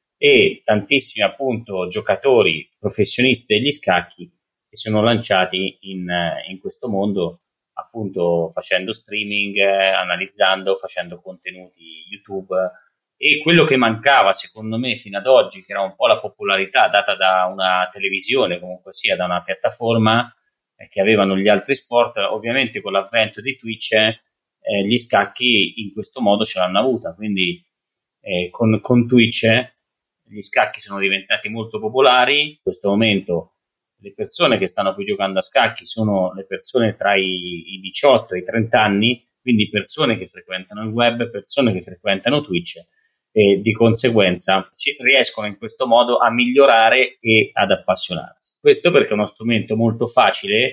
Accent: native